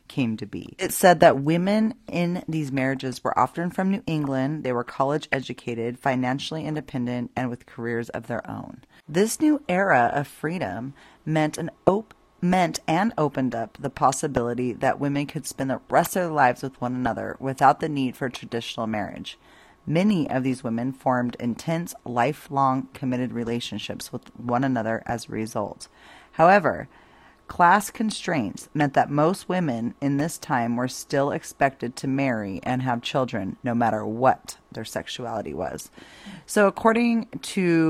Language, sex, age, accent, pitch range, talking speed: English, female, 30-49, American, 120-160 Hz, 160 wpm